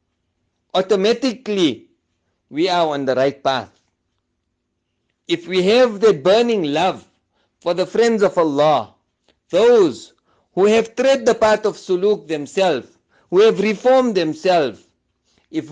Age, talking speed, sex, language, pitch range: 50-69, 120 wpm, male, English, 155-225 Hz